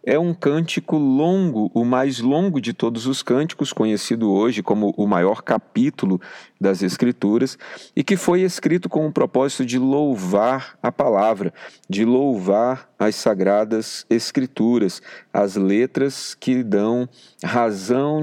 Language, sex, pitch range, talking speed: Portuguese, male, 100-130 Hz, 130 wpm